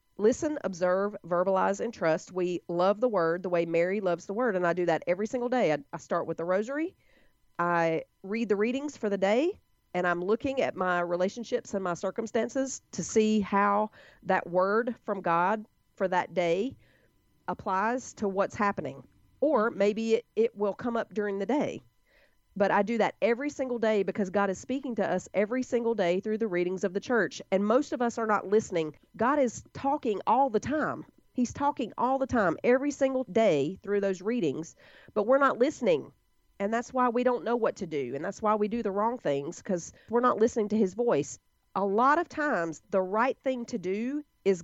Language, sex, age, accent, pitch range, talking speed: English, female, 40-59, American, 185-240 Hz, 205 wpm